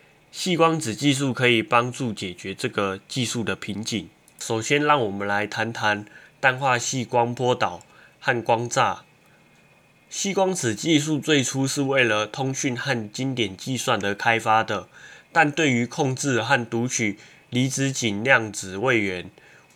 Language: Chinese